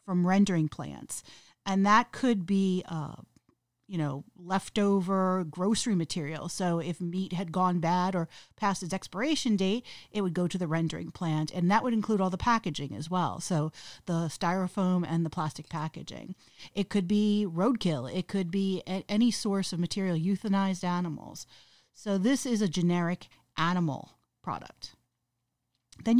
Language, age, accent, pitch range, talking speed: English, 40-59, American, 165-205 Hz, 155 wpm